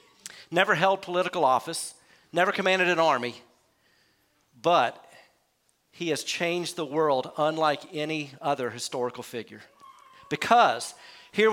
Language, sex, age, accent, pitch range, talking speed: English, male, 50-69, American, 150-200 Hz, 110 wpm